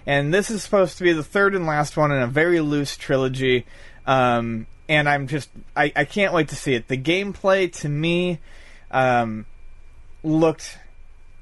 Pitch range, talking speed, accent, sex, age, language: 130-175 Hz, 175 wpm, American, male, 30-49, English